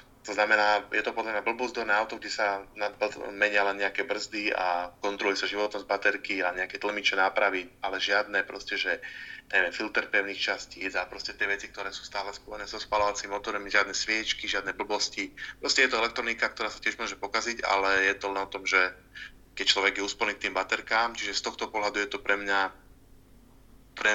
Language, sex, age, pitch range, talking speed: Slovak, male, 20-39, 95-110 Hz, 185 wpm